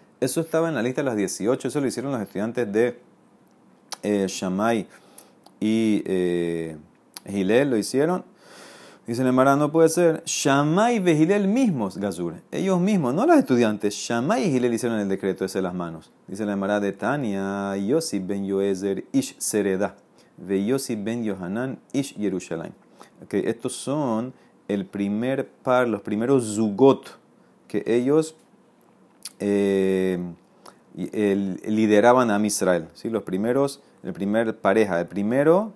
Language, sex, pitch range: Spanish, male, 100-135 Hz